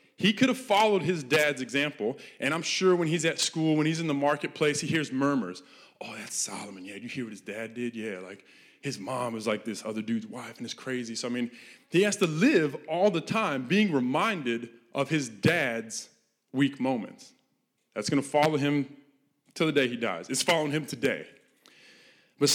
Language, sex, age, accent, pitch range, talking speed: English, male, 20-39, American, 135-175 Hz, 205 wpm